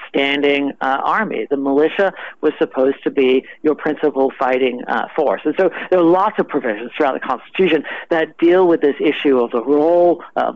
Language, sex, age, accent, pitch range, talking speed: English, male, 50-69, American, 140-170 Hz, 190 wpm